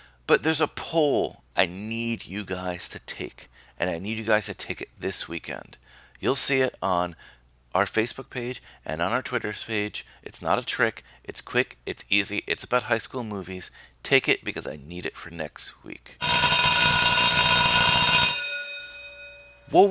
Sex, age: male, 30-49